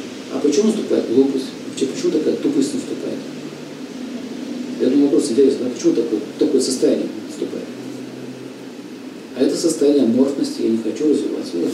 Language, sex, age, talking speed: Russian, male, 40-59, 135 wpm